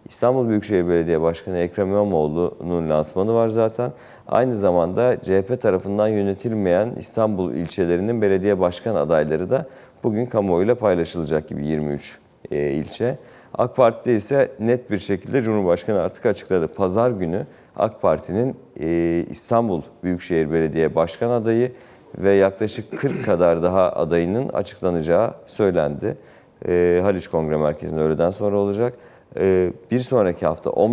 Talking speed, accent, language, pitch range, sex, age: 120 wpm, native, Turkish, 85-110 Hz, male, 40-59